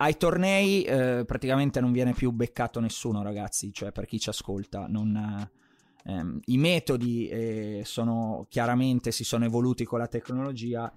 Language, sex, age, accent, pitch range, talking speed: Italian, male, 20-39, native, 110-135 Hz, 150 wpm